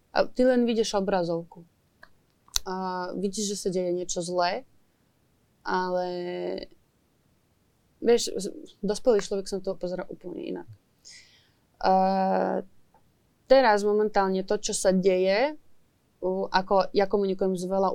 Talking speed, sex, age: 110 wpm, female, 20-39